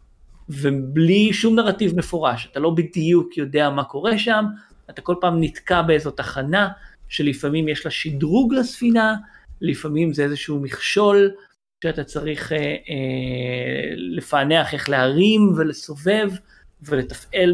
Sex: male